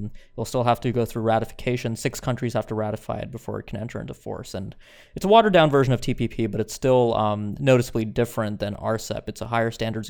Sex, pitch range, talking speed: male, 110-125 Hz, 230 wpm